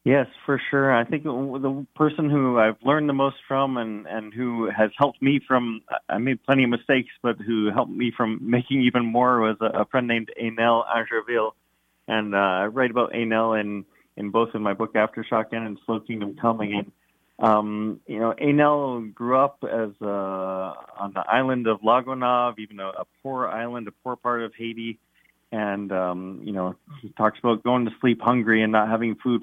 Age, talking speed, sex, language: 30-49, 195 wpm, male, English